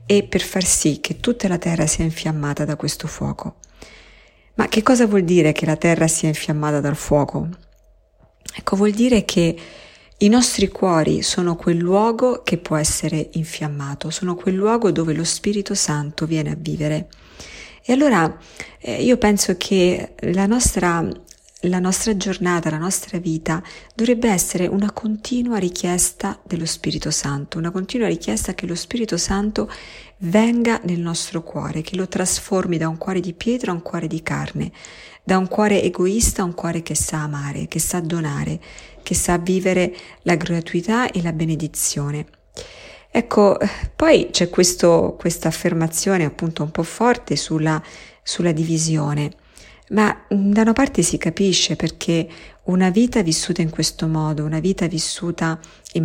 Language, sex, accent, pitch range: Italian, female, native, 160-195 Hz